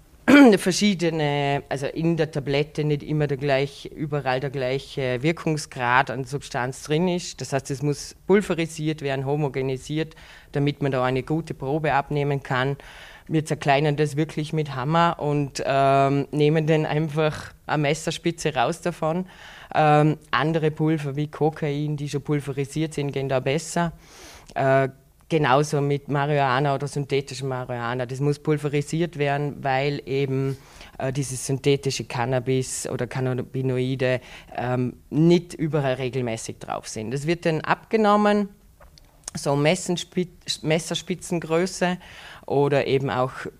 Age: 20-39